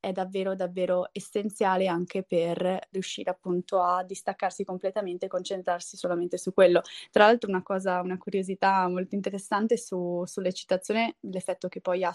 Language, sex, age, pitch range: Italian, female, 20-39, 185-215 Hz